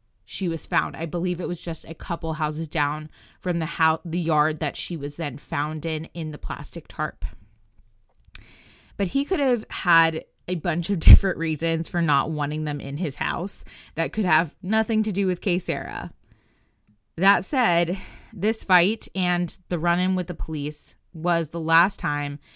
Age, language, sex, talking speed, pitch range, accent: 20-39, English, female, 180 wpm, 150-185 Hz, American